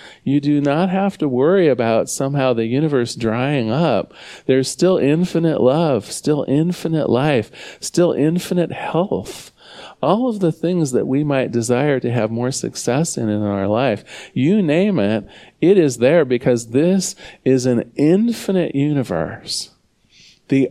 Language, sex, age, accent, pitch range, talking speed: English, male, 40-59, American, 115-155 Hz, 150 wpm